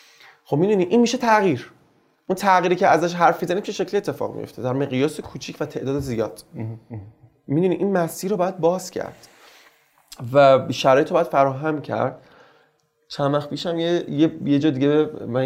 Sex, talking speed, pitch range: male, 155 wpm, 120-160 Hz